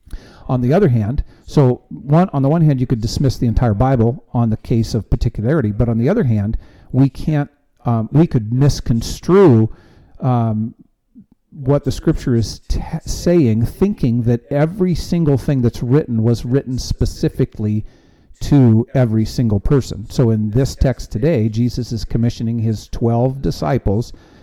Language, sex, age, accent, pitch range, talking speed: English, male, 50-69, American, 115-140 Hz, 155 wpm